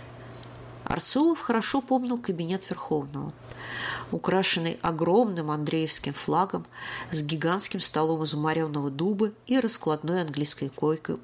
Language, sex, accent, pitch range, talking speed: Russian, female, native, 155-215 Hz, 100 wpm